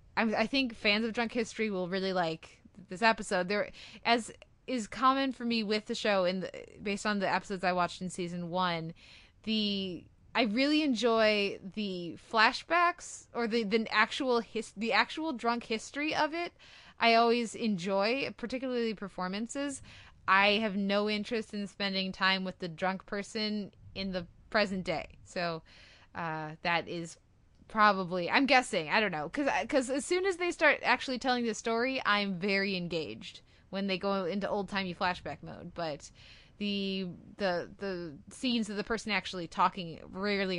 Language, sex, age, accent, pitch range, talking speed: English, female, 20-39, American, 175-225 Hz, 165 wpm